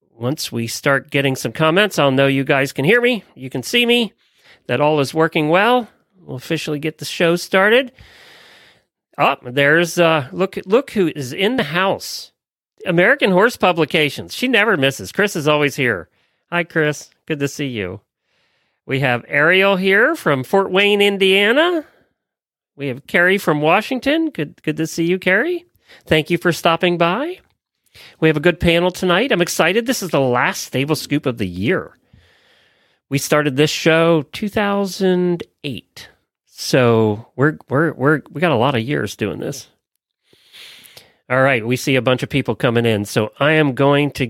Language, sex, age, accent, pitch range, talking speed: English, male, 40-59, American, 130-180 Hz, 170 wpm